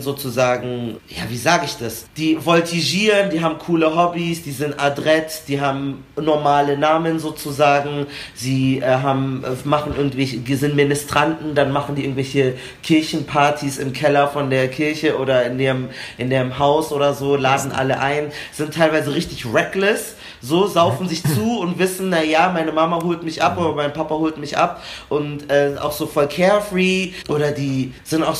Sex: male